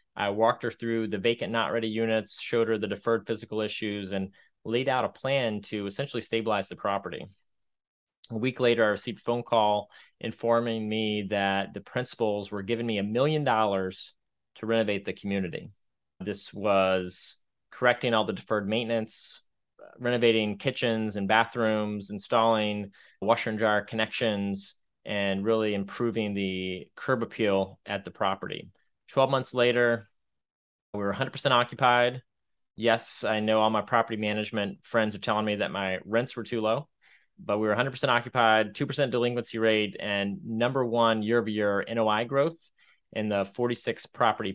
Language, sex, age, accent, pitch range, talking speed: English, male, 30-49, American, 105-115 Hz, 155 wpm